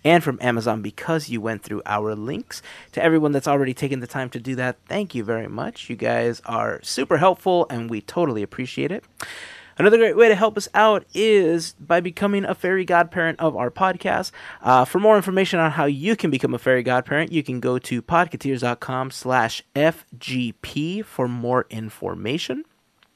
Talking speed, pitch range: 185 wpm, 125-165 Hz